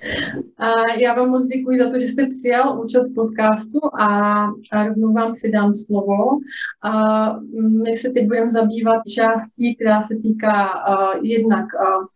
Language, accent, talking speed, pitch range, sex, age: Czech, native, 150 wpm, 210-235 Hz, female, 30-49